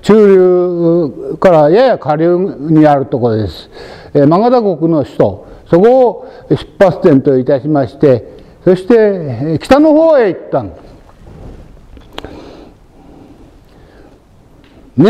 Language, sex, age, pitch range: Japanese, male, 60-79, 155-250 Hz